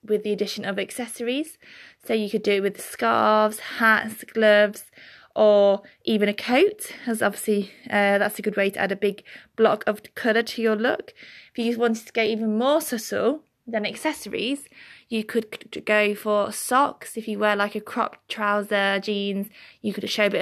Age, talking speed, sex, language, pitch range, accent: 20-39, 190 wpm, female, English, 200-230 Hz, British